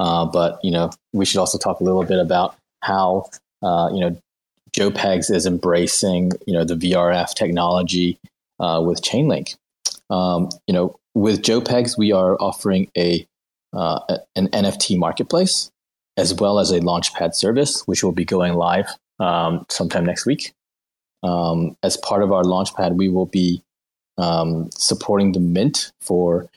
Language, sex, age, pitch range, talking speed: English, male, 20-39, 85-95 Hz, 160 wpm